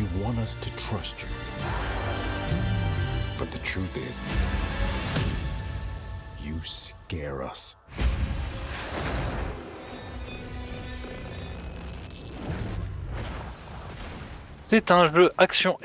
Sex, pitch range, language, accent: male, 100-145 Hz, French, French